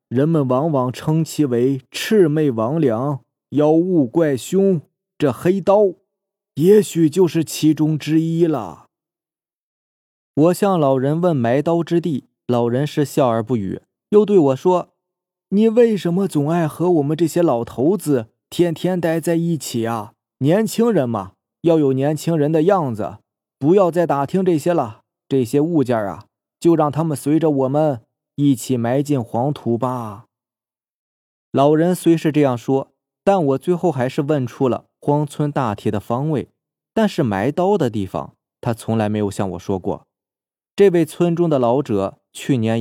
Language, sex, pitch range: Chinese, male, 115-160 Hz